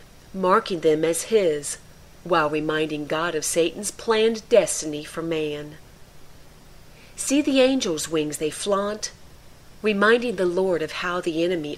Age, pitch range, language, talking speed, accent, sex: 40-59, 155-205 Hz, English, 130 wpm, American, female